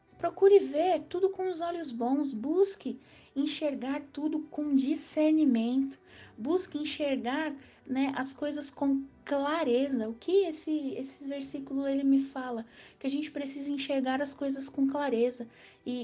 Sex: female